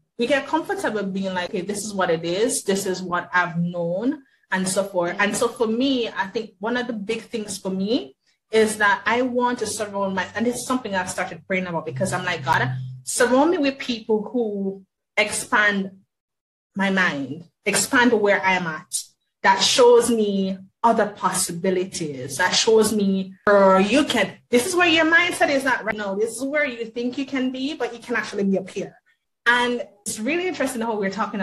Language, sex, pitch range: English, female, 185-240 Hz